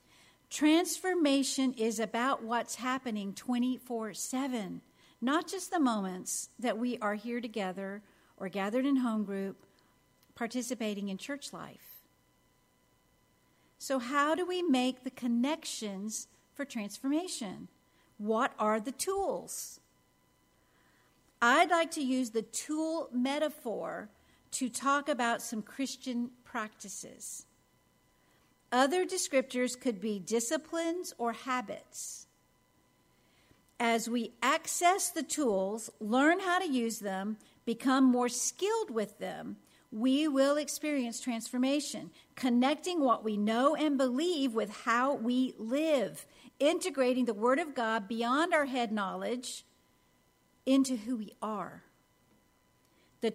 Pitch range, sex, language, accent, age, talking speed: 220-280 Hz, female, English, American, 50-69, 110 wpm